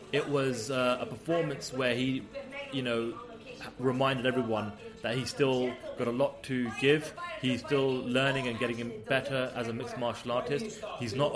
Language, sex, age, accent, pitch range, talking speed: English, male, 30-49, British, 125-160 Hz, 175 wpm